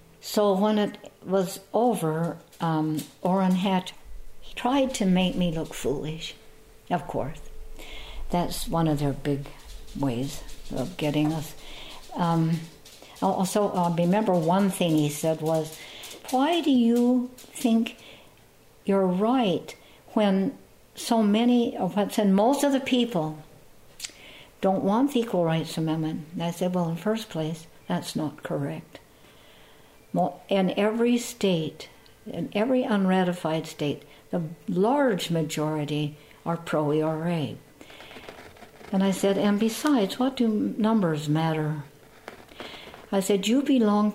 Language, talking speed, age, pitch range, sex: English, 125 wpm, 60-79, 160-220 Hz, female